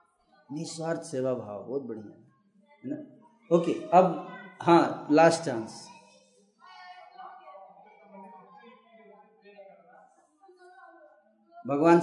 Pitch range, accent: 165-235 Hz, native